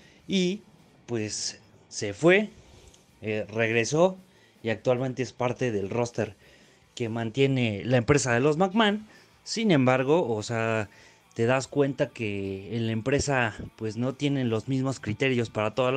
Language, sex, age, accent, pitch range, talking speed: Spanish, male, 30-49, Mexican, 110-140 Hz, 145 wpm